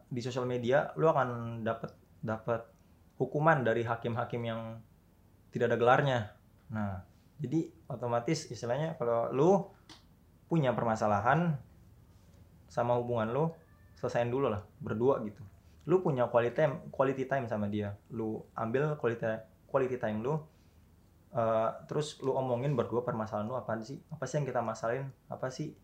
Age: 20-39